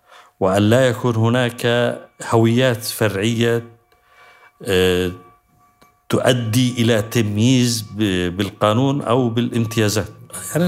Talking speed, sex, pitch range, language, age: 75 wpm, male, 100-125 Hz, Arabic, 50-69